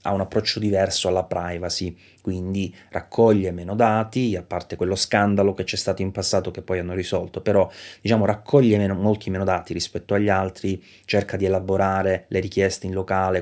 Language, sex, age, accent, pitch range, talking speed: Italian, male, 20-39, native, 90-105 Hz, 180 wpm